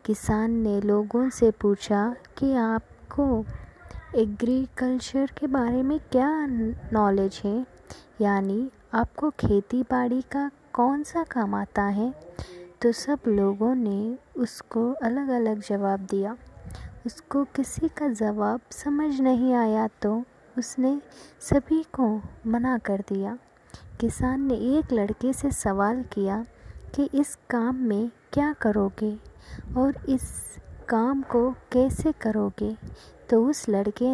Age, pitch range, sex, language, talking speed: 20-39, 210-265 Hz, female, Hindi, 120 wpm